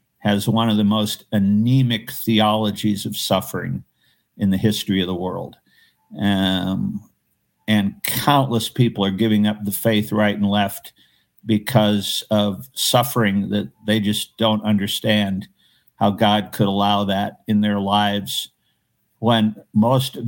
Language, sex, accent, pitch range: English, male, American, 105-125 Hz